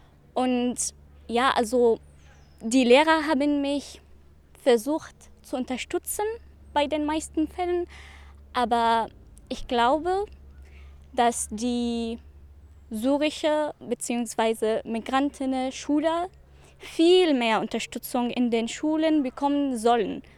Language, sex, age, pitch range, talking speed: German, female, 20-39, 240-310 Hz, 90 wpm